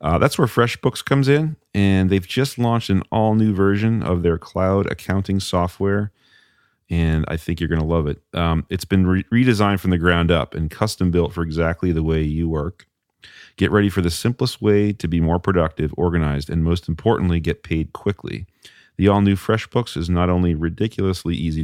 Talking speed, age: 185 wpm, 40-59